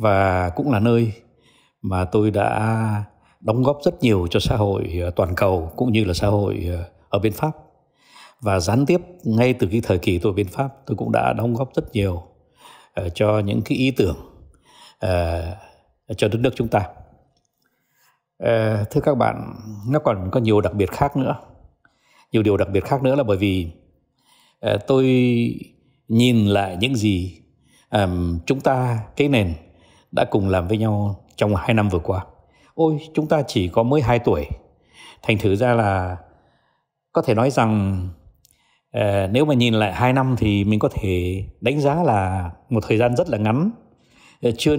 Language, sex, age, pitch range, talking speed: Vietnamese, male, 60-79, 100-130 Hz, 170 wpm